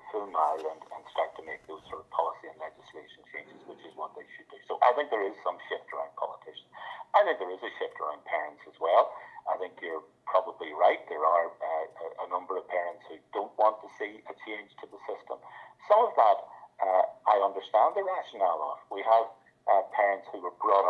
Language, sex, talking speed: English, male, 220 wpm